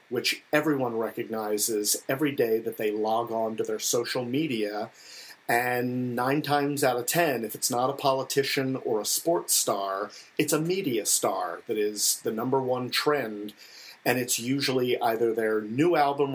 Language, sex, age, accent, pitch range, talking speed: English, male, 40-59, American, 110-135 Hz, 165 wpm